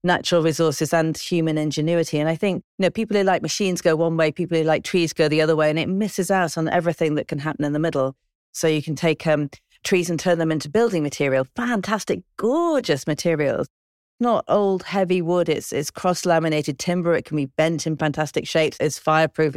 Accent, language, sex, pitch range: British, English, female, 155-190 Hz